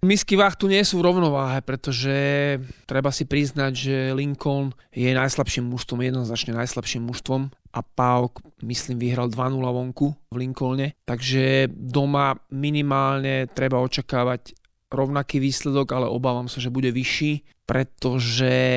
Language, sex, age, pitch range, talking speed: Slovak, male, 30-49, 125-140 Hz, 130 wpm